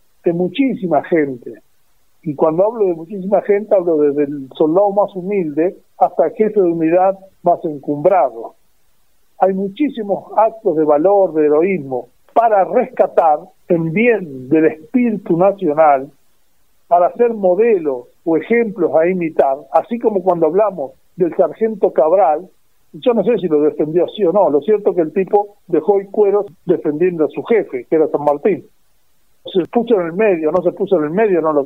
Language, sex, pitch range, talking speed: Spanish, male, 160-210 Hz, 170 wpm